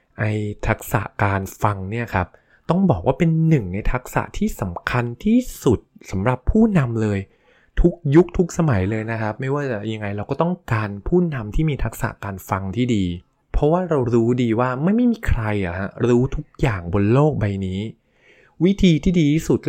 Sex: male